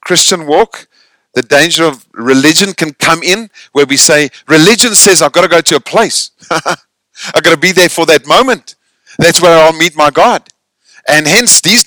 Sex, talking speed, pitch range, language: male, 190 wpm, 155-235 Hz, English